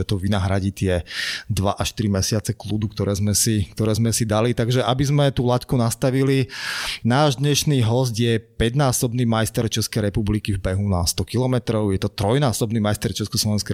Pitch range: 100-120 Hz